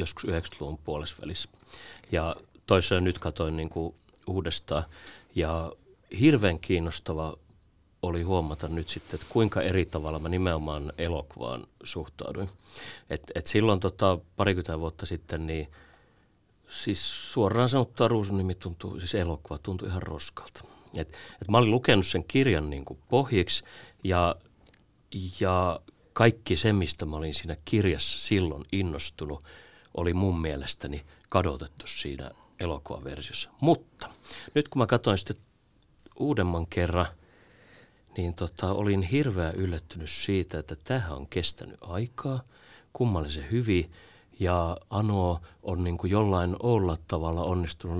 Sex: male